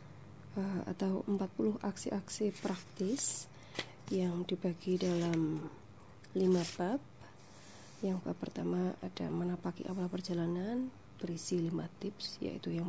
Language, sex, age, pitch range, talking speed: Indonesian, female, 20-39, 150-195 Hz, 100 wpm